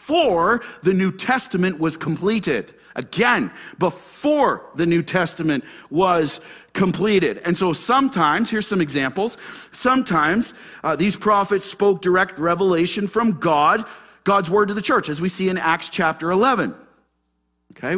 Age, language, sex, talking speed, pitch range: 40-59, English, male, 135 wpm, 155-210 Hz